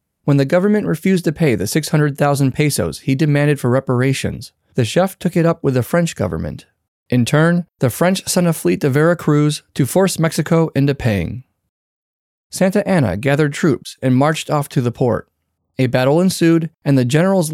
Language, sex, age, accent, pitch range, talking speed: English, male, 30-49, American, 120-170 Hz, 180 wpm